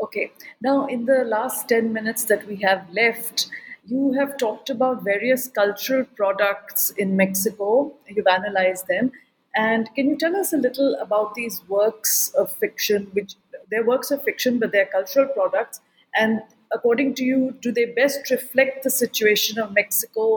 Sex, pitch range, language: female, 200-255 Hz, English